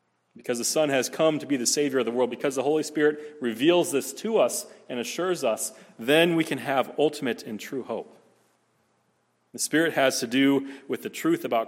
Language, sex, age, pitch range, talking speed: English, male, 30-49, 125-155 Hz, 205 wpm